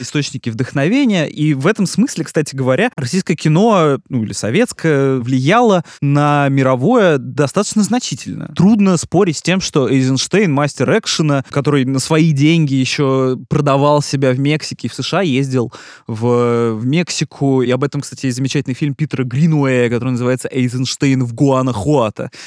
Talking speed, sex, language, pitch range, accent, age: 145 wpm, male, Russian, 130-165 Hz, native, 20-39